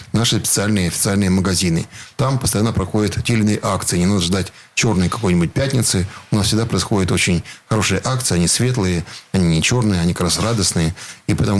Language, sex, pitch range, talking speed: Russian, male, 95-110 Hz, 180 wpm